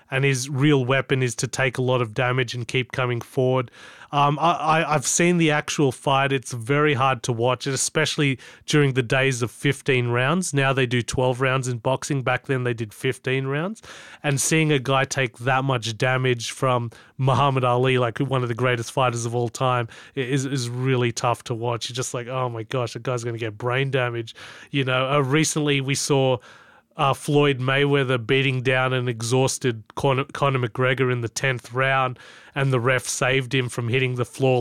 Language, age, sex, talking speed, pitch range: English, 30-49, male, 200 wpm, 125-140 Hz